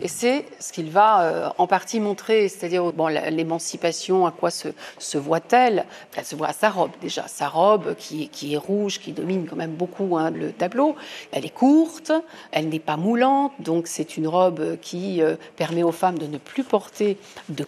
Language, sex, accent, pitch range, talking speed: French, female, French, 165-245 Hz, 195 wpm